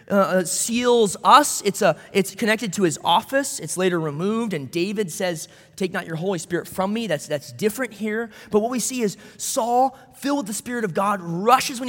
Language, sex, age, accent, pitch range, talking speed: English, male, 20-39, American, 175-245 Hz, 205 wpm